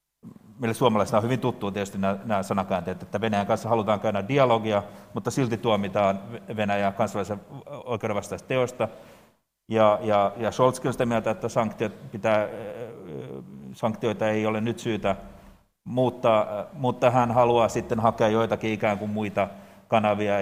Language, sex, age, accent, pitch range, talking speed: Finnish, male, 30-49, native, 100-115 Hz, 140 wpm